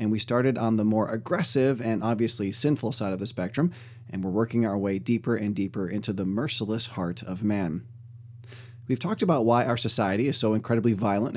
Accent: American